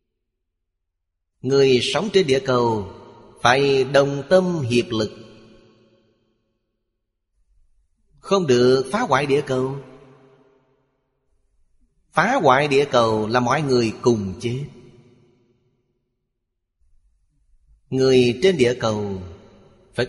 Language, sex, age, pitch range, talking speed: Vietnamese, male, 30-49, 100-130 Hz, 90 wpm